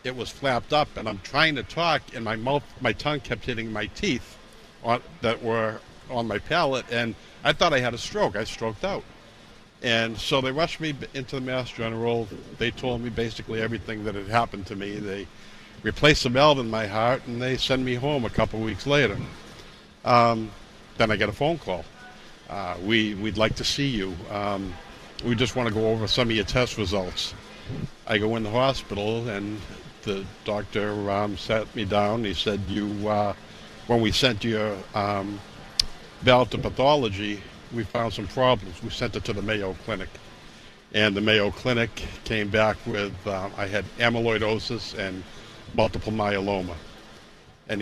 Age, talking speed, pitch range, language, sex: 60-79, 180 wpm, 100-120 Hz, English, male